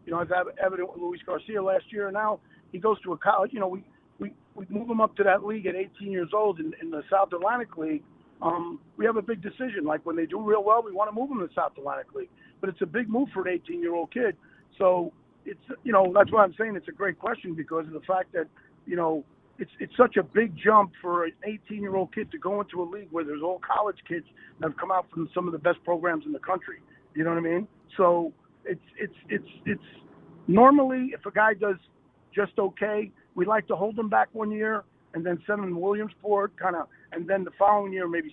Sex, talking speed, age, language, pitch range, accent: male, 250 wpm, 50-69, English, 170-210 Hz, American